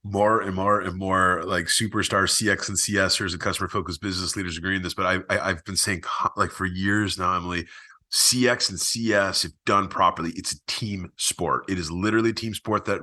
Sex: male